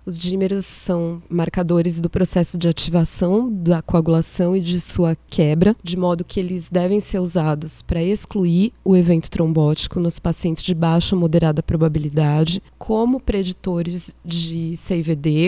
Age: 20-39